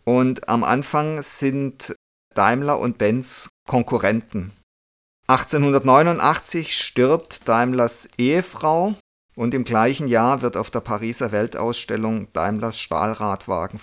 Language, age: German, 50-69